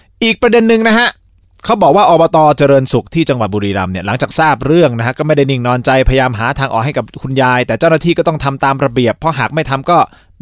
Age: 20-39